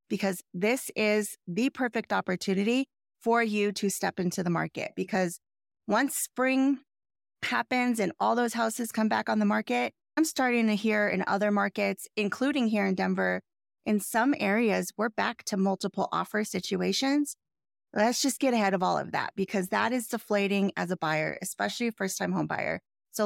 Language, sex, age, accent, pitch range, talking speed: English, female, 30-49, American, 195-245 Hz, 175 wpm